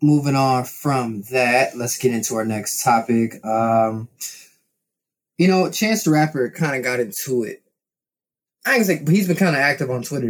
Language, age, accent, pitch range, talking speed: English, 20-39, American, 125-155 Hz, 175 wpm